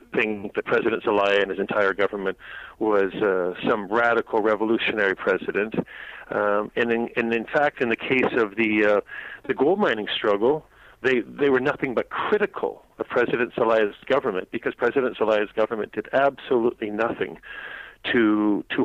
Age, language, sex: 40-59, English, male